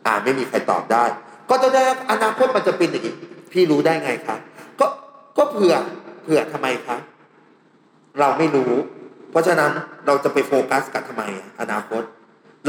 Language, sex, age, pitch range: Thai, male, 30-49, 130-175 Hz